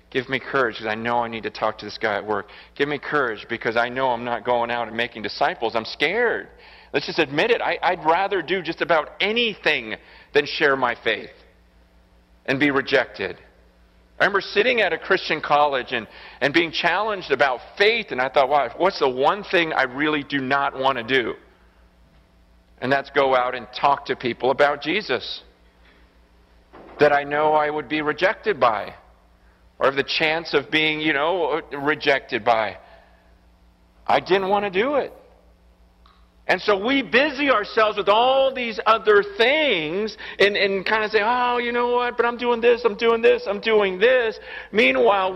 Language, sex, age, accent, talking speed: English, male, 40-59, American, 185 wpm